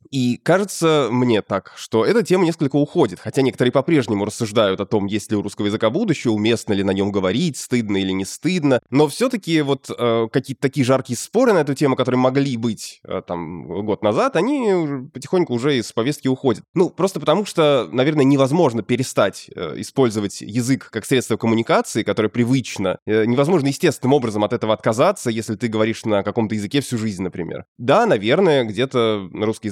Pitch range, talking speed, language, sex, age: 105-140 Hz, 180 wpm, Russian, male, 20-39